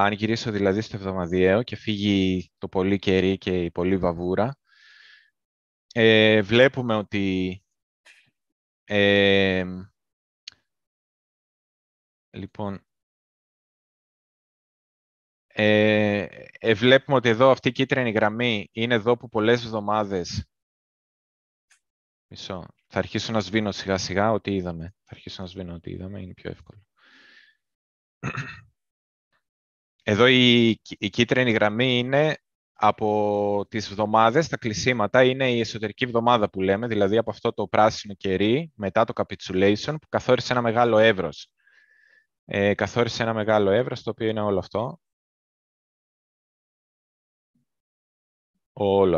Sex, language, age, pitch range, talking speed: male, Greek, 20-39, 95-120 Hz, 105 wpm